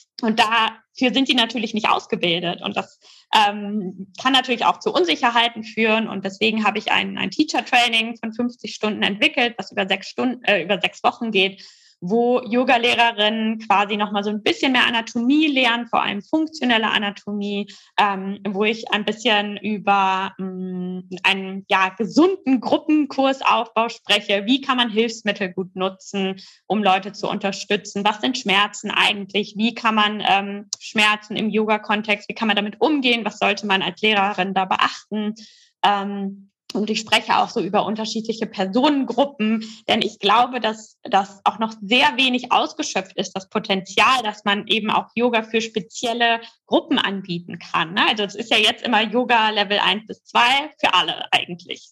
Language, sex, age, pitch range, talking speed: German, female, 20-39, 200-240 Hz, 165 wpm